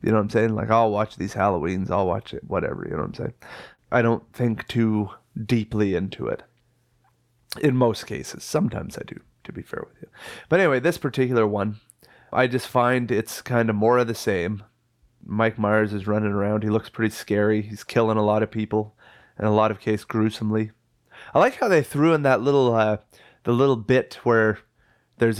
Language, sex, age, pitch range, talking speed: English, male, 30-49, 105-130 Hz, 205 wpm